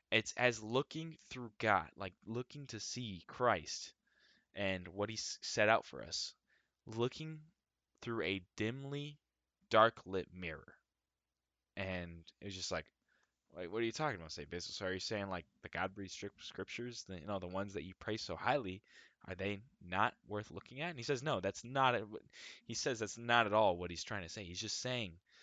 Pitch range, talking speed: 90-120 Hz, 190 wpm